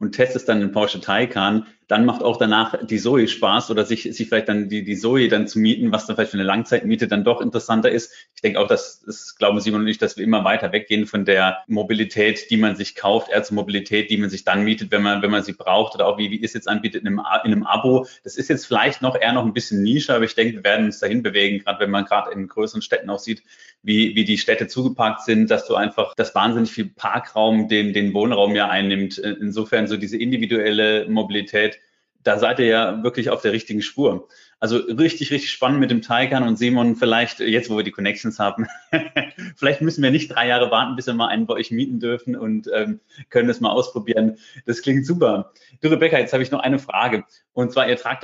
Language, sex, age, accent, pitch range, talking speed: German, male, 30-49, German, 105-125 Hz, 240 wpm